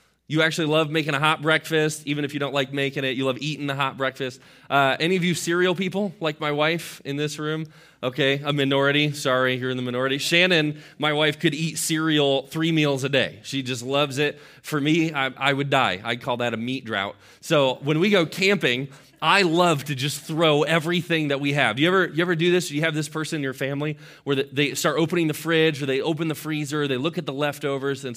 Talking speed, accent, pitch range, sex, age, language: 235 wpm, American, 135-160 Hz, male, 20-39, English